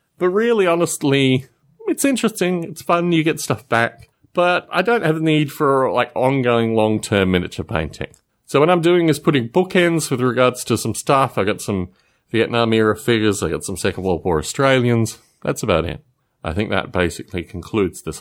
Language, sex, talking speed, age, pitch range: English, male, 185 wpm, 30-49, 105-165 Hz